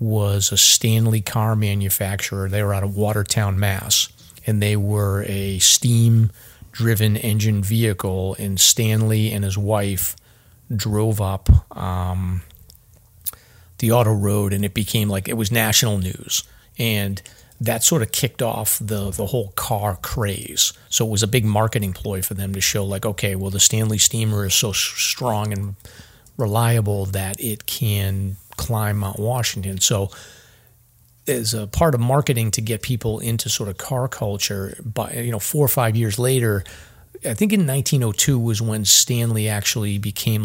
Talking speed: 160 wpm